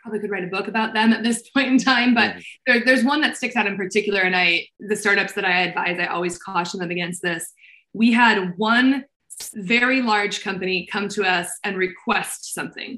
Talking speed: 210 wpm